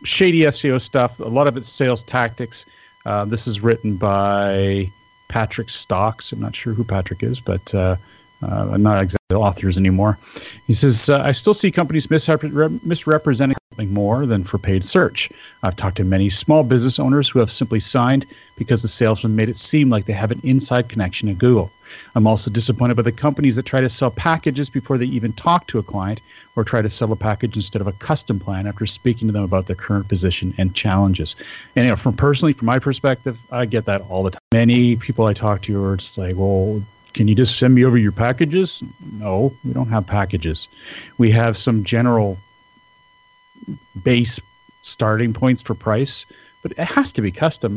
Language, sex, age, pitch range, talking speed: English, male, 40-59, 100-130 Hz, 200 wpm